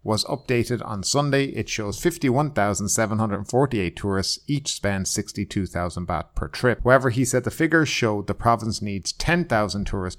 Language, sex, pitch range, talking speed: English, male, 95-125 Hz, 145 wpm